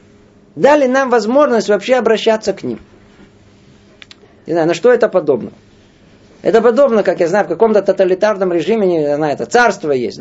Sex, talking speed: male, 155 wpm